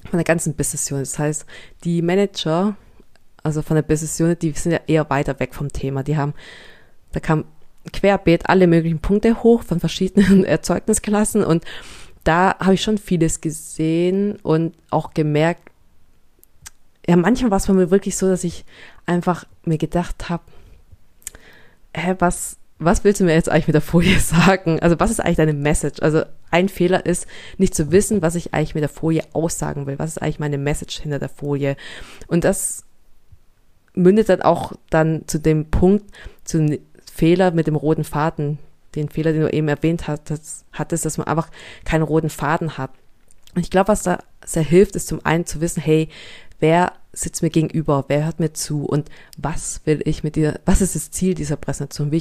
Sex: female